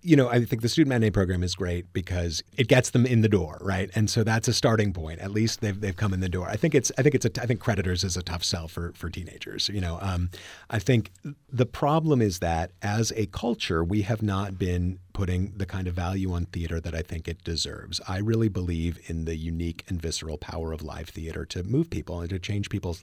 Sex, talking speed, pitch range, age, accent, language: male, 250 wpm, 90-115 Hz, 40-59, American, English